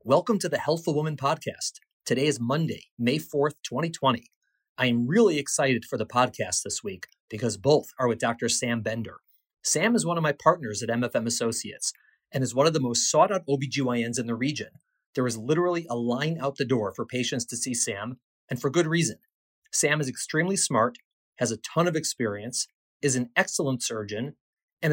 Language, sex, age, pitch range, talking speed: English, male, 30-49, 120-155 Hz, 195 wpm